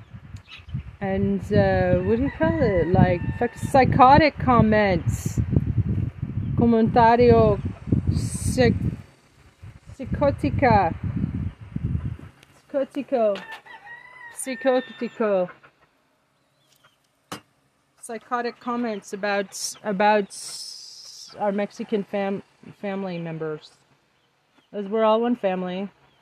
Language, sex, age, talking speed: English, female, 30-49, 65 wpm